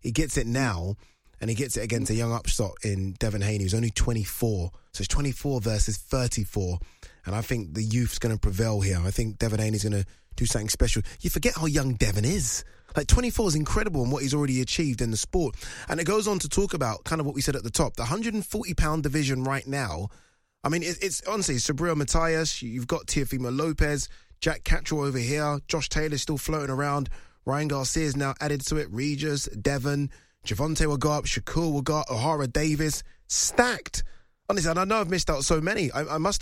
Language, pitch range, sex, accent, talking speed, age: English, 120-155 Hz, male, British, 215 wpm, 20-39